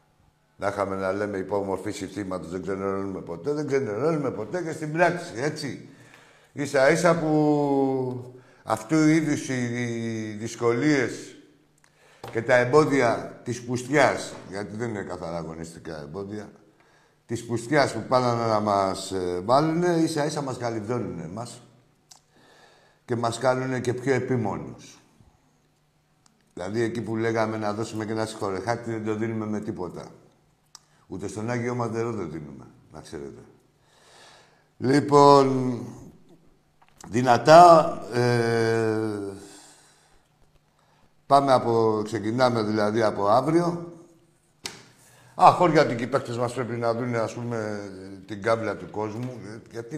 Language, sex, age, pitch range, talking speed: Greek, male, 60-79, 105-135 Hz, 120 wpm